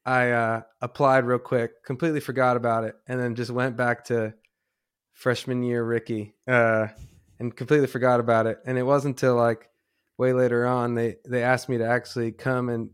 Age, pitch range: 20-39, 115-125 Hz